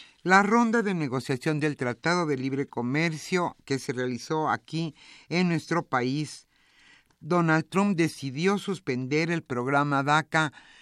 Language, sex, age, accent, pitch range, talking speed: Spanish, male, 50-69, Mexican, 135-170 Hz, 130 wpm